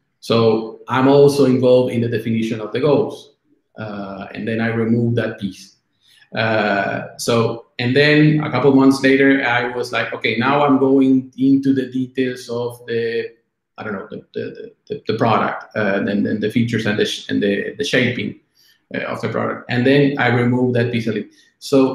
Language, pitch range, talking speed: Italian, 115-140 Hz, 195 wpm